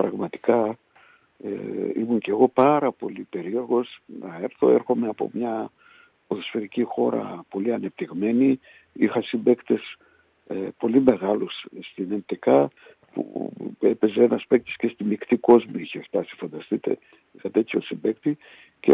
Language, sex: Greek, male